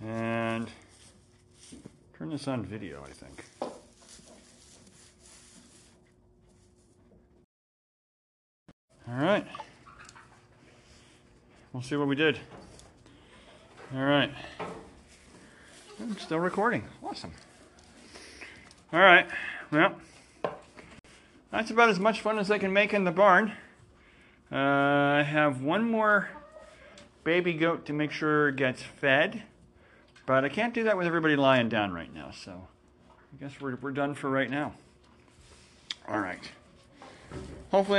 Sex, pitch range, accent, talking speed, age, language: male, 125-180 Hz, American, 110 wpm, 40-59, English